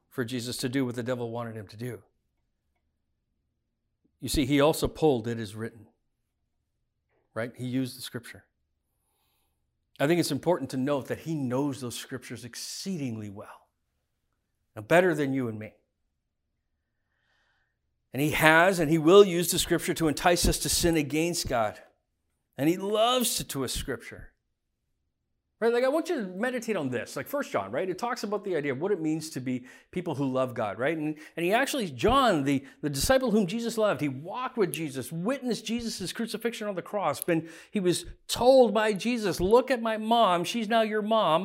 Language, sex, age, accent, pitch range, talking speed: English, male, 50-69, American, 135-220 Hz, 185 wpm